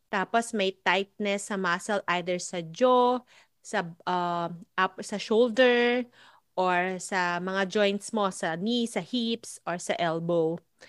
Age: 30-49